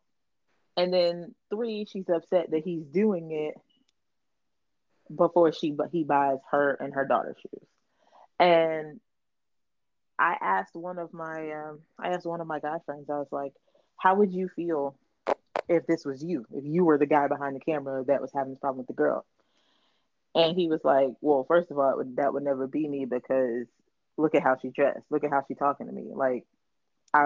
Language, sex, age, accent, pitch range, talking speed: English, female, 20-39, American, 145-185 Hz, 200 wpm